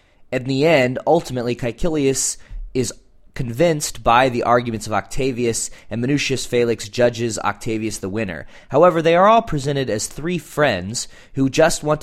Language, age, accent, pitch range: English, 20-39, American, 110-140 Hz